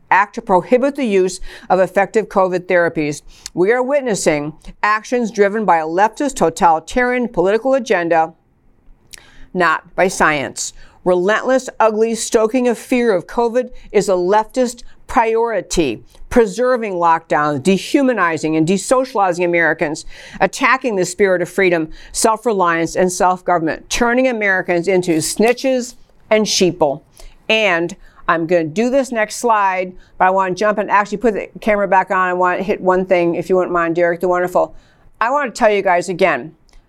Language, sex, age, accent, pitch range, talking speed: English, female, 50-69, American, 180-235 Hz, 150 wpm